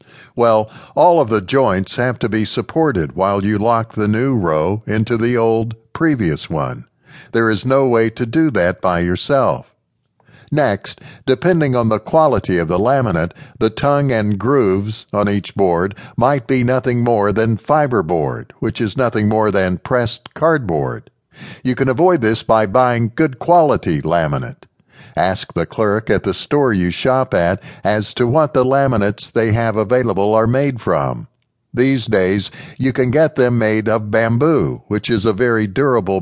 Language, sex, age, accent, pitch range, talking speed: English, male, 60-79, American, 105-130 Hz, 165 wpm